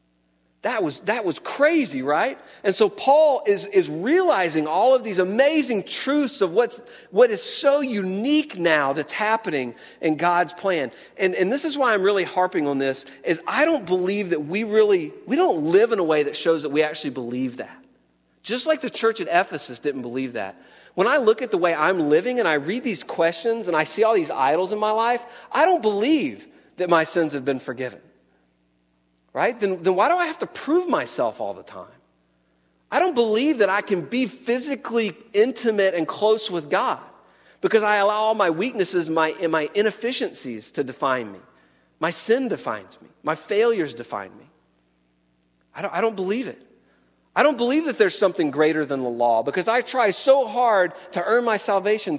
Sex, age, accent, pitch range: male, 40-59, American, 150-245 Hz